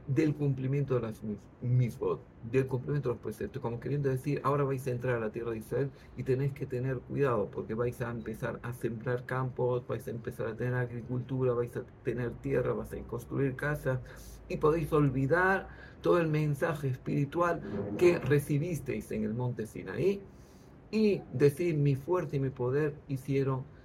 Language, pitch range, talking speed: Greek, 125-150 Hz, 175 wpm